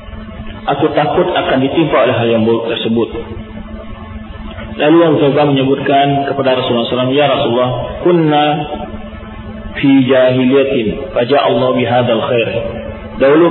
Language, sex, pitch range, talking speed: Malay, male, 115-150 Hz, 110 wpm